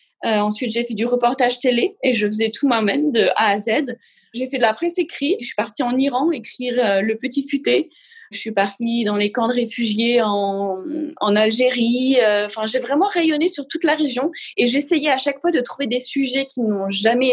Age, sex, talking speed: 20-39, female, 220 wpm